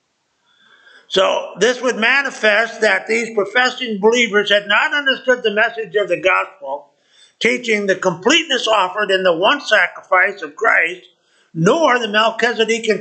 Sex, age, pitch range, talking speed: male, 50-69, 200-255 Hz, 135 wpm